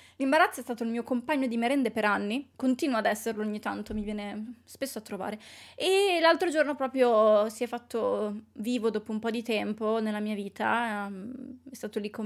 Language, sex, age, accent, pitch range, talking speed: Italian, female, 20-39, native, 210-255 Hz, 195 wpm